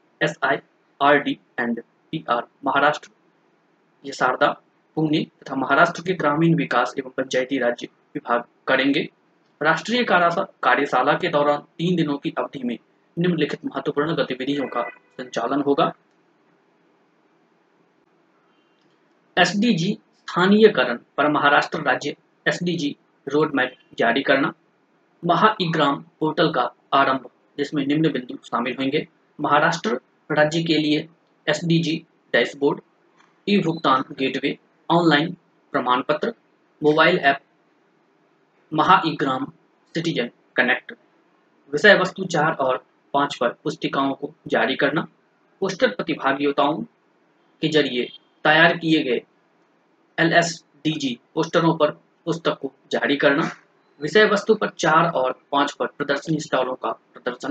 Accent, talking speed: native, 80 wpm